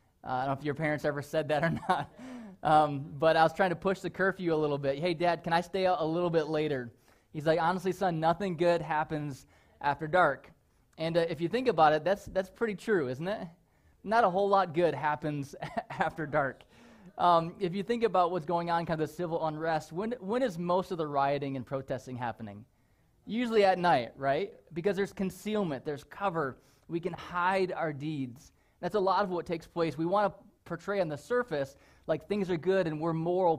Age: 20-39